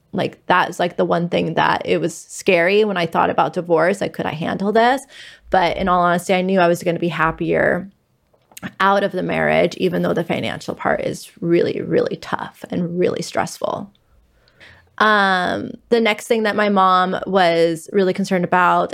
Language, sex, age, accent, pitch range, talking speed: English, female, 20-39, American, 180-205 Hz, 185 wpm